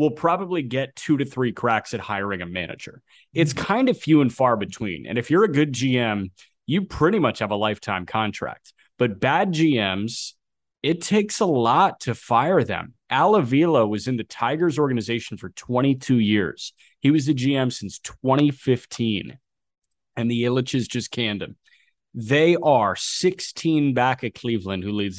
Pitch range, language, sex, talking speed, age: 105-135 Hz, English, male, 165 wpm, 30-49